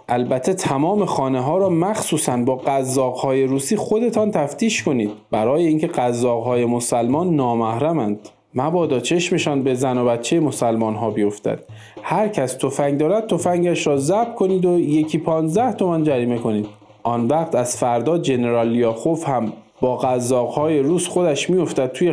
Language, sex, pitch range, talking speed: Persian, male, 125-175 Hz, 150 wpm